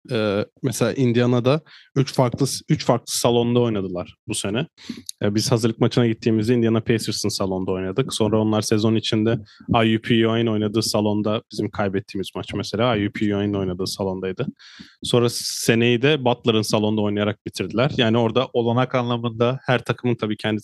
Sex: male